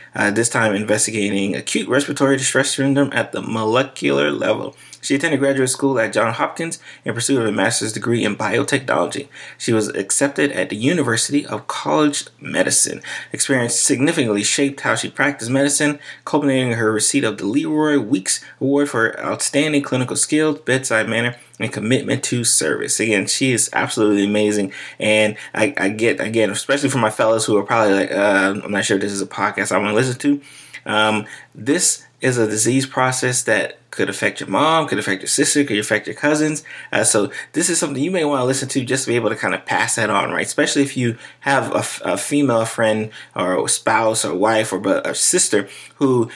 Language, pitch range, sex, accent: English, 110-140 Hz, male, American